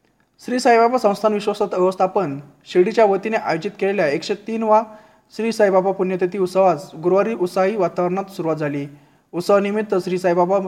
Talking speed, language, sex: 130 wpm, Marathi, male